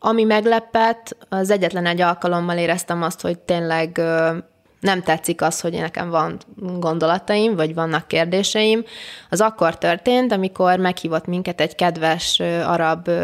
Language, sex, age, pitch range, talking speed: Hungarian, female, 20-39, 170-205 Hz, 130 wpm